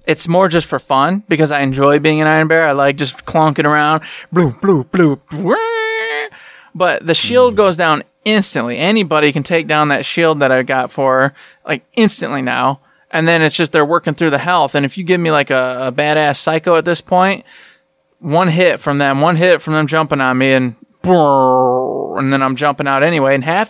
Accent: American